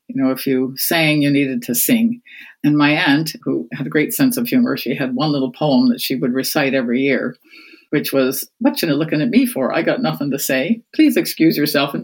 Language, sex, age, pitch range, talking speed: English, female, 50-69, 150-245 Hz, 230 wpm